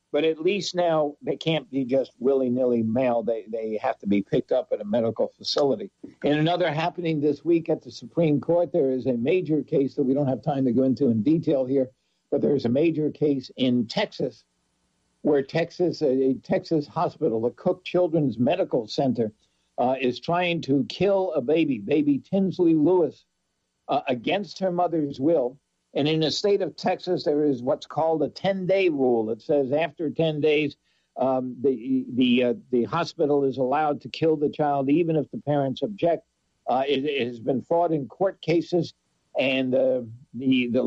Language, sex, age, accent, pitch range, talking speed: English, male, 60-79, American, 130-170 Hz, 185 wpm